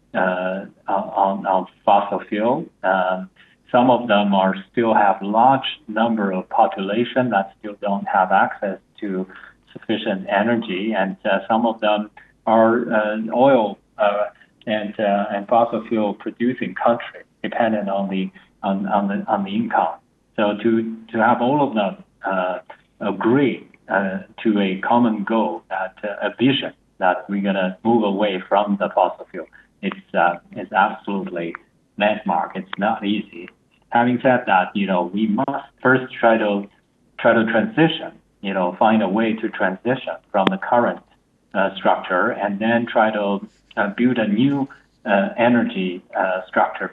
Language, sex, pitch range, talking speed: English, male, 100-115 Hz, 155 wpm